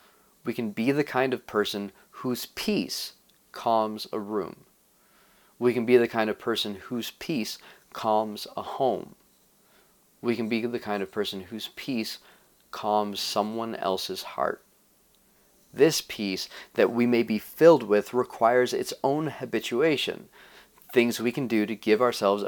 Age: 30-49